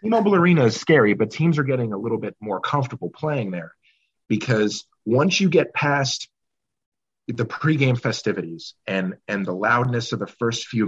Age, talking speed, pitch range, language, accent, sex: 30-49, 170 wpm, 105-130 Hz, English, American, male